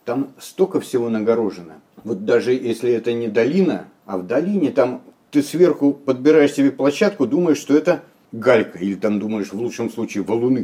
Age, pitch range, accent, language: 60-79, 115-150 Hz, native, Russian